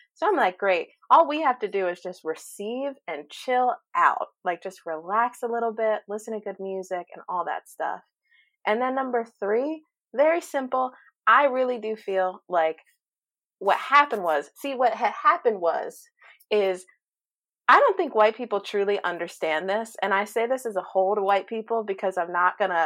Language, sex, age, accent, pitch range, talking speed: English, female, 30-49, American, 185-255 Hz, 185 wpm